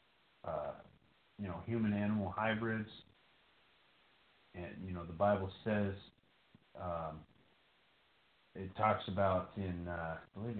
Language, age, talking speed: English, 40-59, 110 wpm